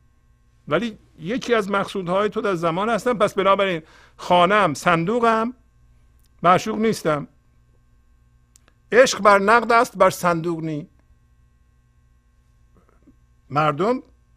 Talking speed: 90 wpm